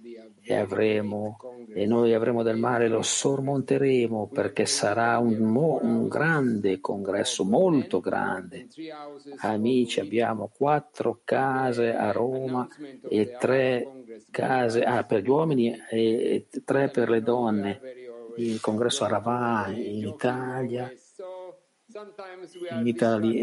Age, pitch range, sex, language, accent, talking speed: 50-69, 115-140 Hz, male, Italian, native, 100 wpm